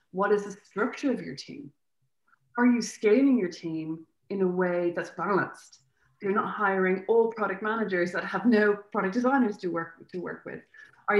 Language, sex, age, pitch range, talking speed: English, female, 20-39, 180-230 Hz, 190 wpm